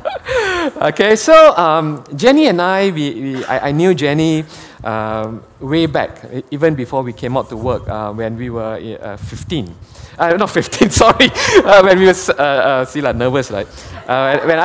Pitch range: 115-160 Hz